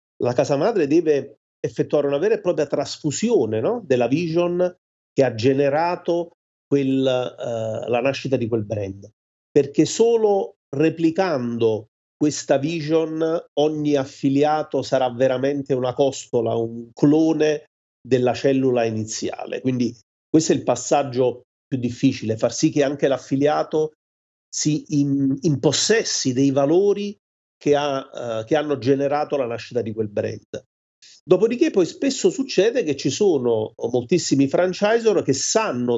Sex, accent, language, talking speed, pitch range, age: male, native, Italian, 125 wpm, 125-155 Hz, 40-59